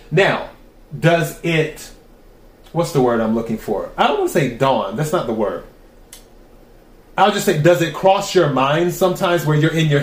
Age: 30-49